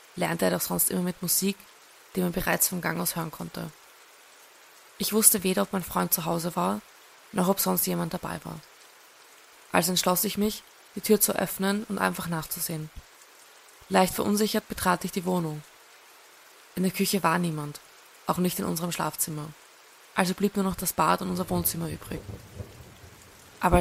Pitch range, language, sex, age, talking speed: 160-190 Hz, German, female, 20-39, 170 wpm